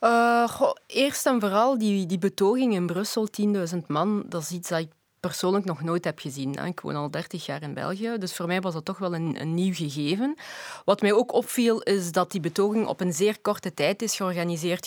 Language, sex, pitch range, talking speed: Dutch, female, 180-220 Hz, 220 wpm